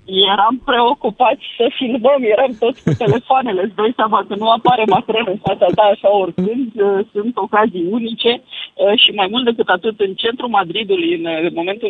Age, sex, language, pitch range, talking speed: 20-39, female, Romanian, 185-245 Hz, 155 wpm